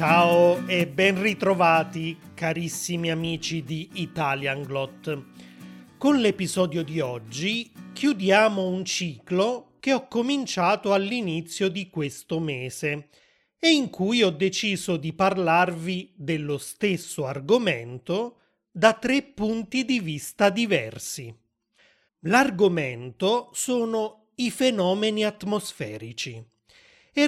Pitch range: 155-215 Hz